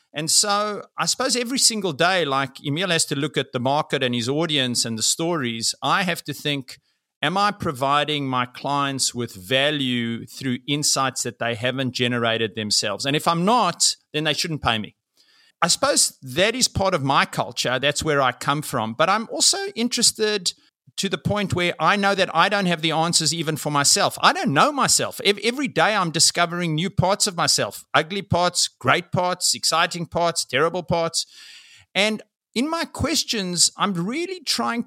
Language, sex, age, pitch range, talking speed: English, male, 50-69, 140-205 Hz, 185 wpm